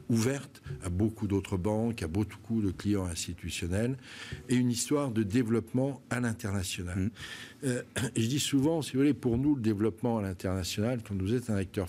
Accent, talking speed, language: French, 175 wpm, French